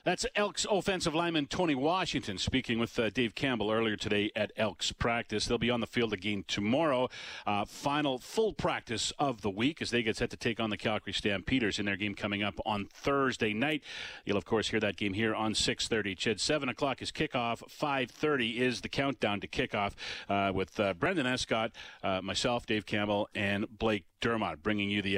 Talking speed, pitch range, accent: 195 wpm, 105-140 Hz, American